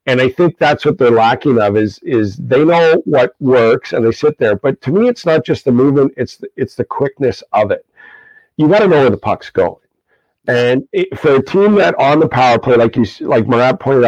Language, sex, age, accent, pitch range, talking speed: English, male, 50-69, American, 115-150 Hz, 240 wpm